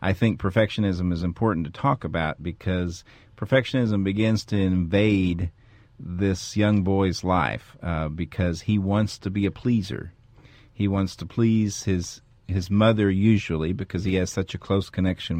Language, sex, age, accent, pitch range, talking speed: English, male, 50-69, American, 90-105 Hz, 155 wpm